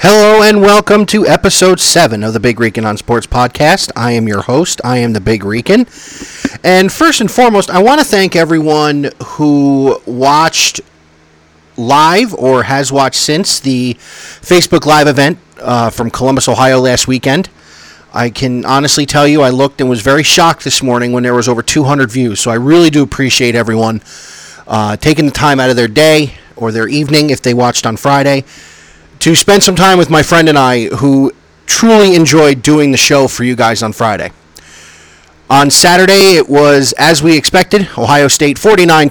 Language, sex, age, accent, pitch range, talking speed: English, male, 40-59, American, 120-160 Hz, 185 wpm